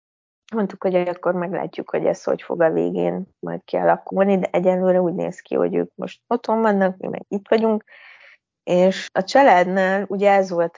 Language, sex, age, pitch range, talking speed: Hungarian, female, 20-39, 175-205 Hz, 180 wpm